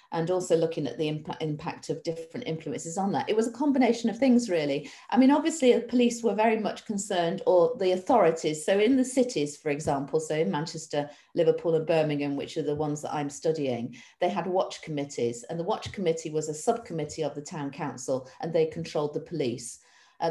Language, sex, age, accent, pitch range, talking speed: English, female, 40-59, British, 150-180 Hz, 205 wpm